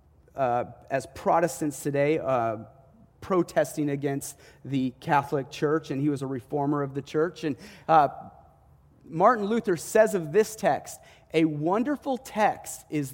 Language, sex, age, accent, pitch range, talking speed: English, male, 30-49, American, 140-215 Hz, 135 wpm